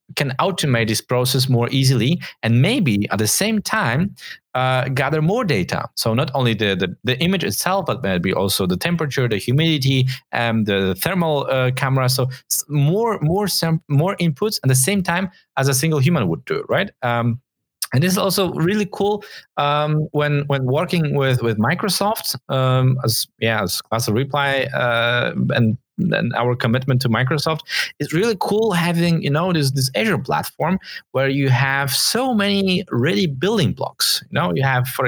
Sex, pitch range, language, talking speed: male, 120-165 Hz, English, 180 wpm